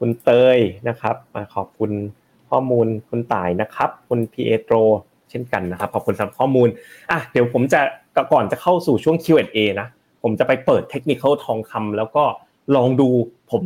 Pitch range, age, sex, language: 110-135 Hz, 30-49, male, Thai